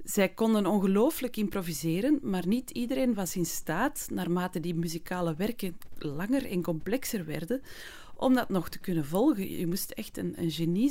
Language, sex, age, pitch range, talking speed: Dutch, female, 30-49, 175-230 Hz, 165 wpm